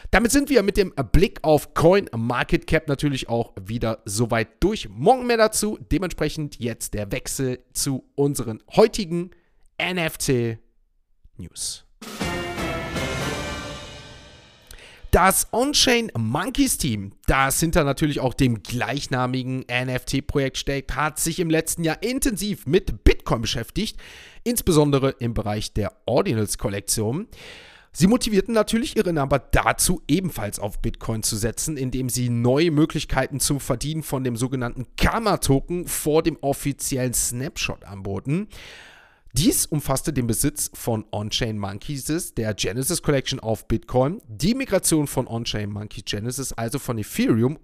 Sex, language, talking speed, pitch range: male, German, 125 wpm, 115-165 Hz